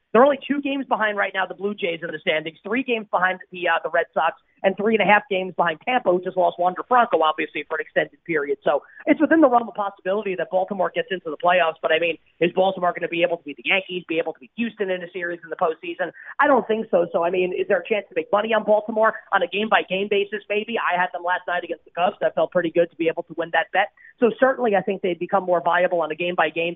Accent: American